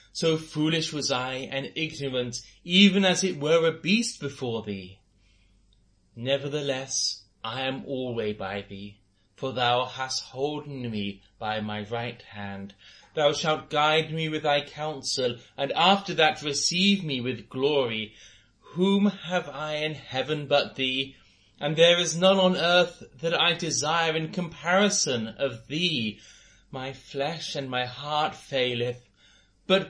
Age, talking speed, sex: 30-49, 140 wpm, male